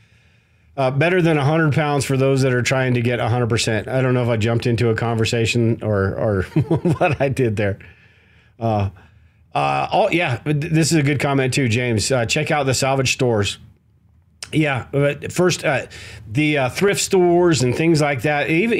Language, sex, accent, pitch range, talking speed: English, male, American, 110-140 Hz, 195 wpm